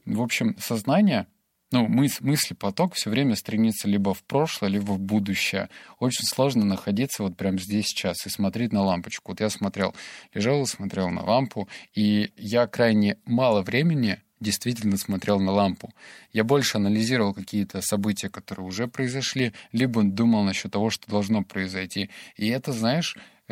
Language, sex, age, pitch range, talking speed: Russian, male, 20-39, 100-120 Hz, 155 wpm